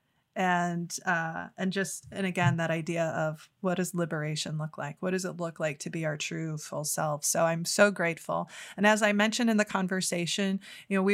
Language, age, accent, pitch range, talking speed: English, 20-39, American, 175-220 Hz, 210 wpm